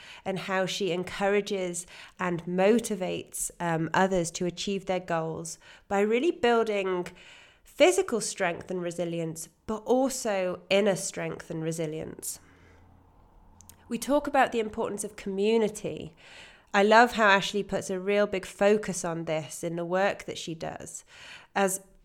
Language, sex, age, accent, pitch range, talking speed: English, female, 20-39, British, 175-215 Hz, 135 wpm